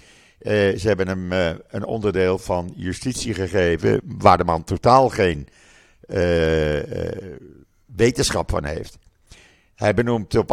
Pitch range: 90-120 Hz